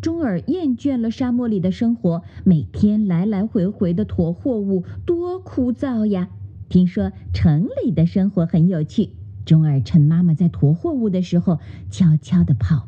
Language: Chinese